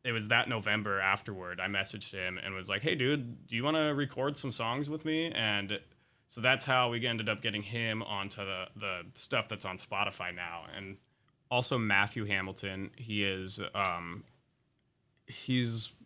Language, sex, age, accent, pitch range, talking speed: English, male, 20-39, American, 95-115 Hz, 175 wpm